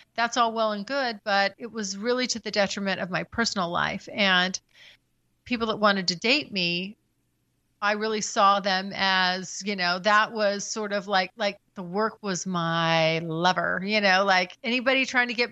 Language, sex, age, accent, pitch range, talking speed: English, female, 40-59, American, 190-240 Hz, 185 wpm